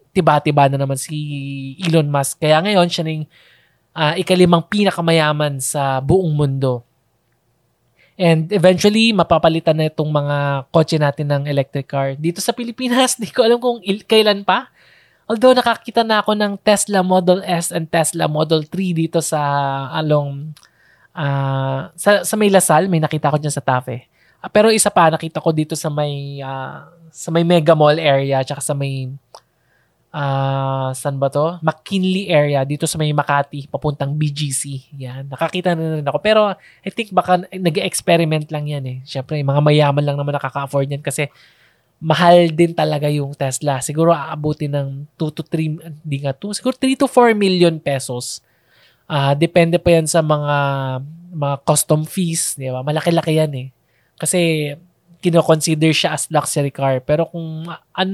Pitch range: 140-175 Hz